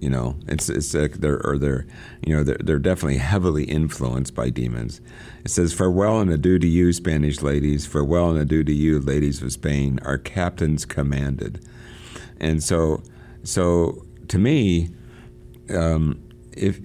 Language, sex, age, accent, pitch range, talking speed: English, male, 60-79, American, 70-85 Hz, 155 wpm